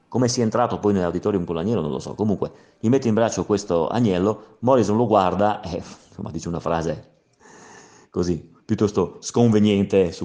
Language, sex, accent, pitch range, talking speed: Italian, male, native, 90-115 Hz, 175 wpm